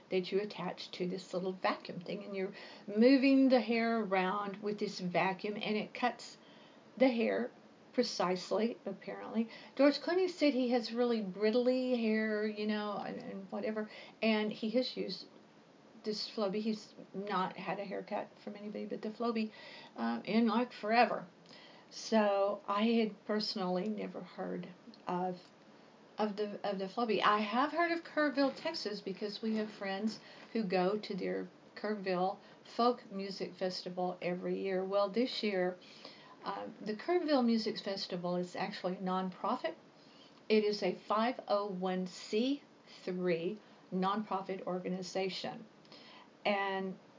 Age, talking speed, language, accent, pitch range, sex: 50-69, 135 wpm, English, American, 190-230 Hz, female